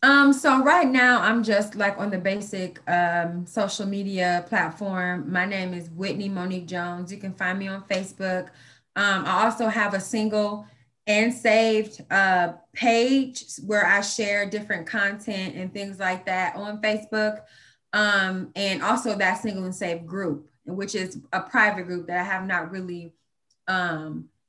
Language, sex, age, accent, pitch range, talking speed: English, female, 20-39, American, 180-215 Hz, 160 wpm